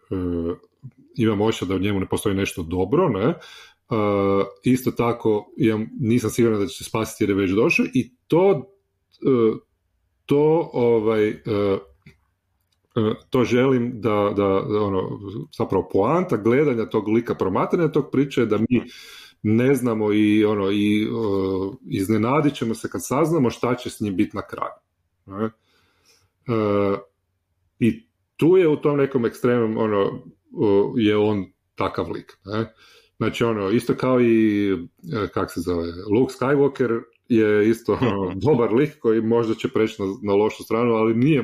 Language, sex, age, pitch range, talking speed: Croatian, male, 40-59, 95-120 Hz, 150 wpm